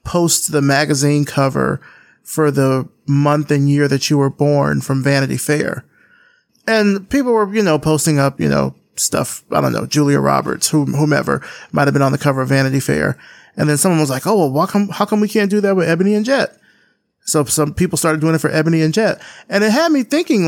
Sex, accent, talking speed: male, American, 215 wpm